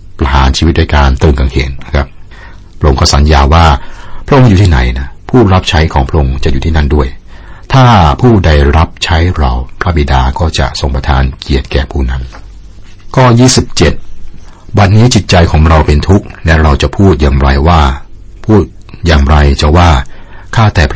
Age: 60-79